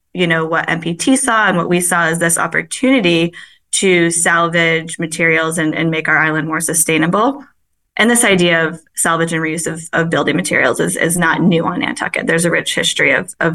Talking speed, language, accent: 200 wpm, English, American